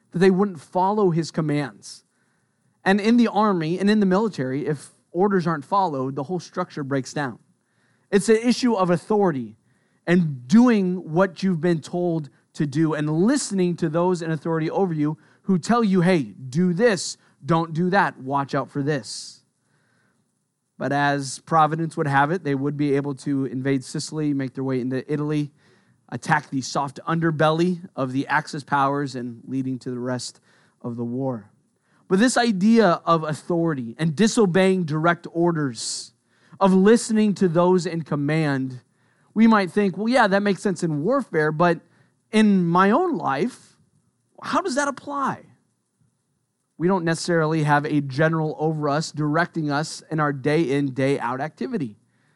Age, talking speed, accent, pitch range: 30-49, 160 wpm, American, 145-190 Hz